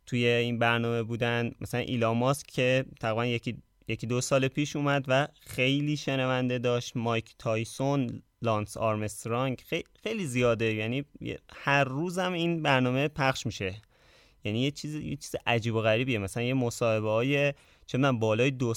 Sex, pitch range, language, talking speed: male, 110-135 Hz, Persian, 145 wpm